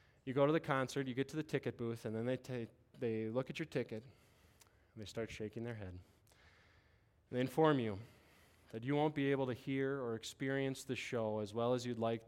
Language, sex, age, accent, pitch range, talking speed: English, male, 20-39, American, 105-140 Hz, 225 wpm